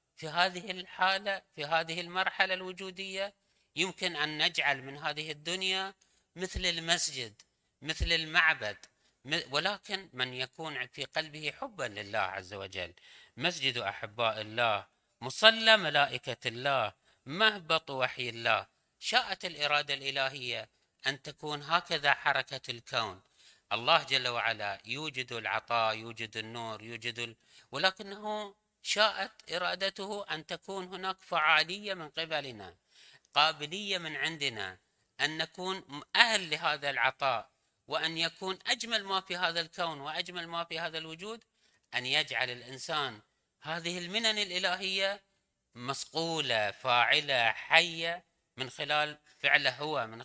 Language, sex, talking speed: Arabic, male, 115 wpm